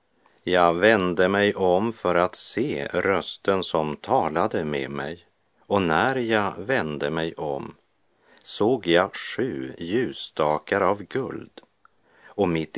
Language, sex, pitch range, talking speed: Swedish, male, 75-95 Hz, 120 wpm